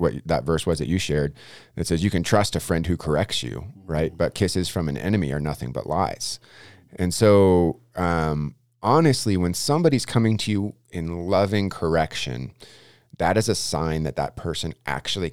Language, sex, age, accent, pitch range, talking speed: English, male, 30-49, American, 80-110 Hz, 185 wpm